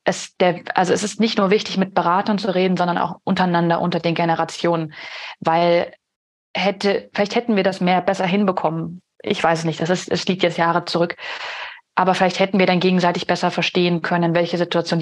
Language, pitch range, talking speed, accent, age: German, 170-205 Hz, 195 wpm, German, 30-49